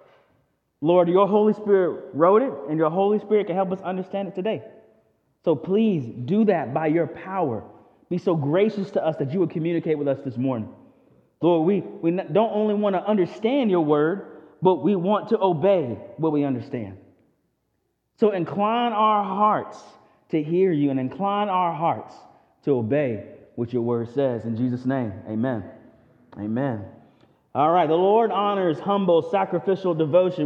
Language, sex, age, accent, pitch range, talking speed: English, male, 30-49, American, 160-225 Hz, 165 wpm